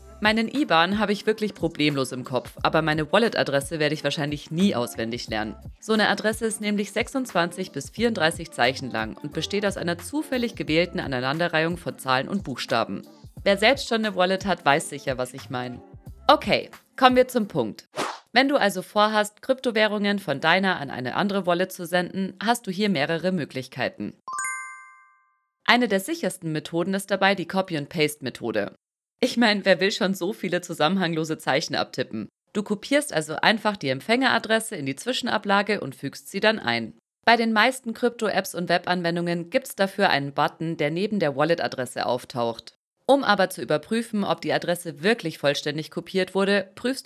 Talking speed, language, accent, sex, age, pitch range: 170 wpm, German, German, female, 40-59, 140-210 Hz